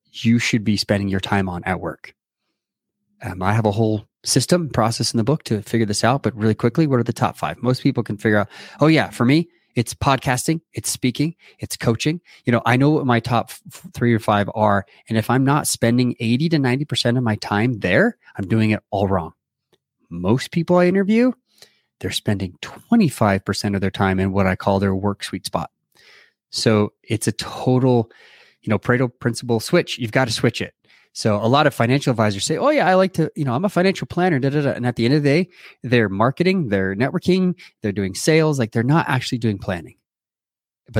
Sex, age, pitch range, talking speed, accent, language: male, 30-49, 110-155 Hz, 215 wpm, American, English